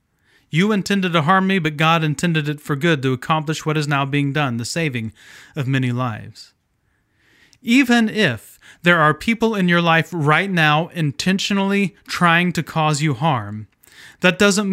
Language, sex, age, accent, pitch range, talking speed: English, male, 30-49, American, 150-190 Hz, 165 wpm